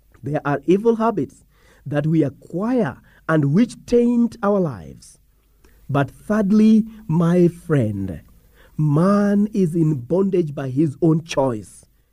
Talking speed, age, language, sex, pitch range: 120 wpm, 50-69, English, male, 135-205 Hz